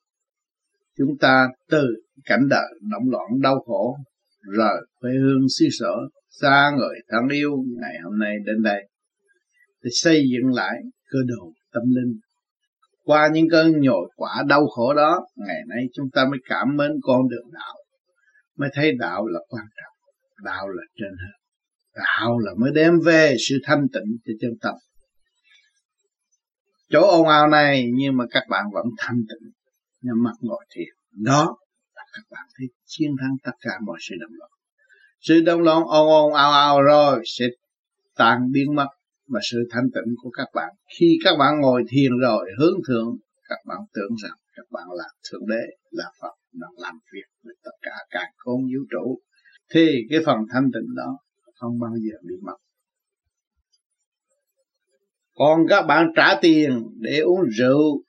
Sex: male